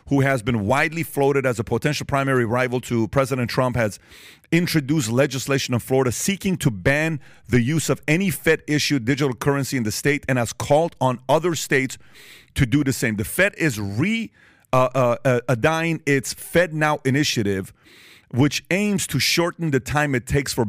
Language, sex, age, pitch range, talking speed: English, male, 40-59, 120-150 Hz, 180 wpm